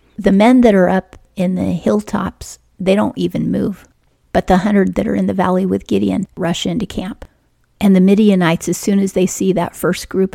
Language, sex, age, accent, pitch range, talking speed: English, female, 40-59, American, 175-195 Hz, 210 wpm